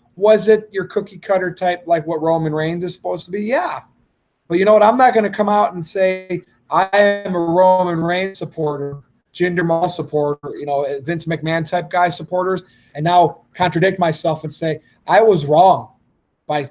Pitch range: 150-185 Hz